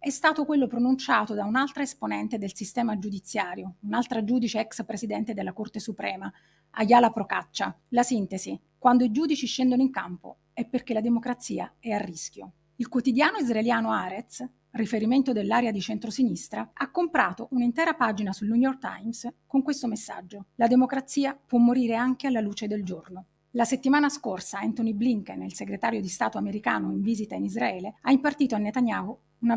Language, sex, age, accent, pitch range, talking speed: Italian, female, 30-49, native, 205-250 Hz, 165 wpm